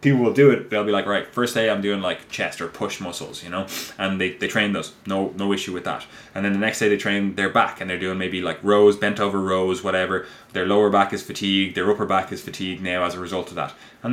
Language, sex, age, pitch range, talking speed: English, male, 20-39, 95-110 Hz, 270 wpm